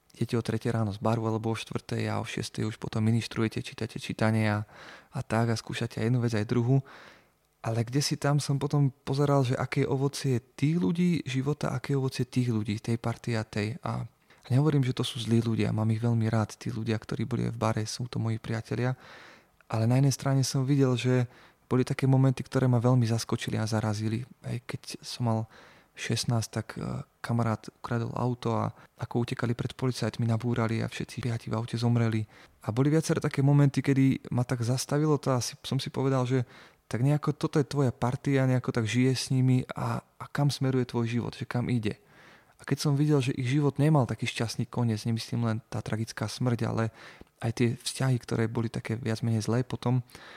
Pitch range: 115-135 Hz